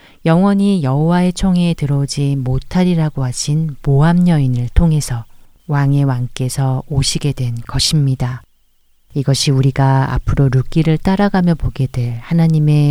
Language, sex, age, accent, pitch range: Korean, female, 40-59, native, 130-170 Hz